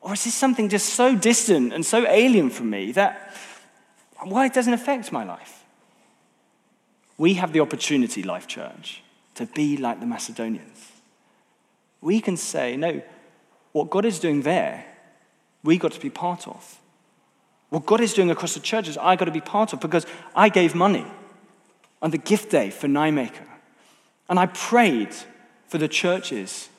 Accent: British